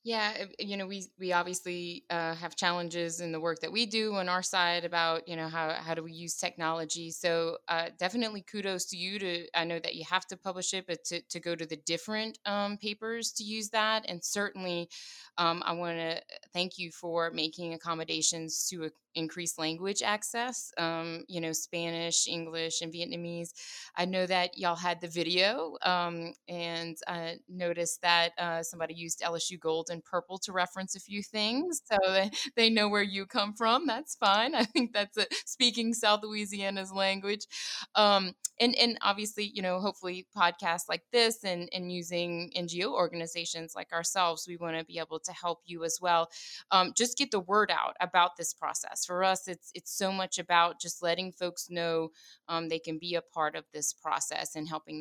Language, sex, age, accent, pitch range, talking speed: English, female, 20-39, American, 170-205 Hz, 190 wpm